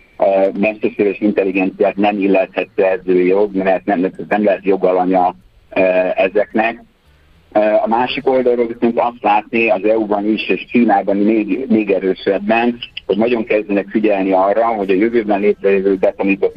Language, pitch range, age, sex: Hungarian, 95-110 Hz, 50-69, male